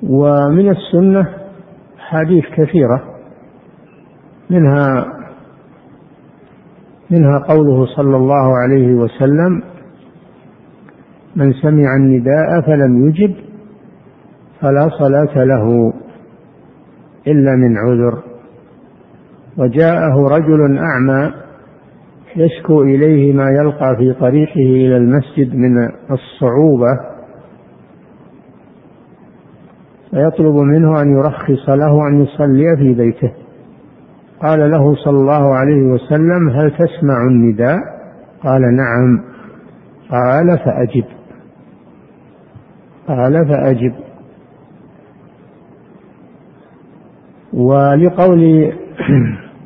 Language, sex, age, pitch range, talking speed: Arabic, male, 60-79, 130-160 Hz, 75 wpm